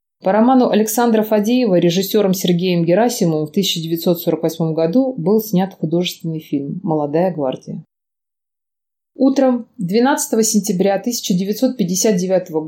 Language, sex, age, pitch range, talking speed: Russian, female, 30-49, 175-235 Hz, 95 wpm